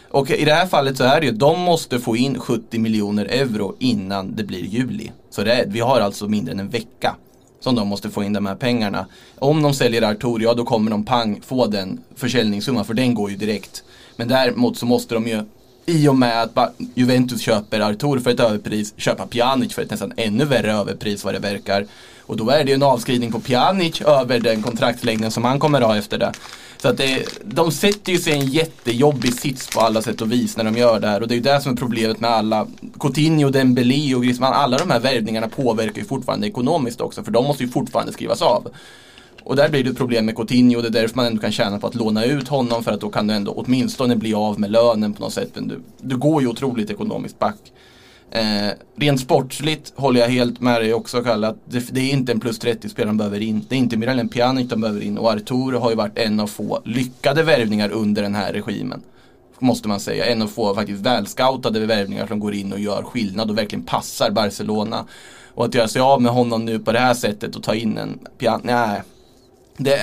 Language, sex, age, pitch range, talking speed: Swedish, male, 20-39, 110-130 Hz, 235 wpm